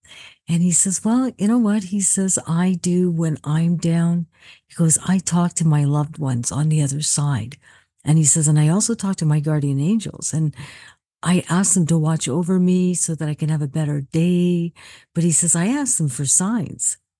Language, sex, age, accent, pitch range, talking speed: English, female, 50-69, American, 155-185 Hz, 215 wpm